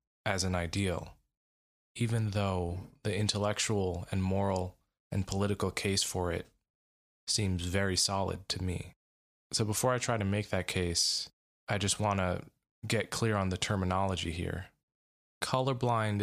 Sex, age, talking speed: male, 20-39, 140 wpm